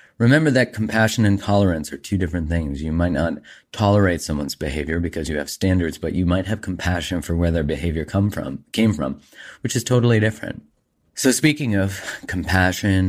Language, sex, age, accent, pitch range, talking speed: English, male, 30-49, American, 80-105 Hz, 185 wpm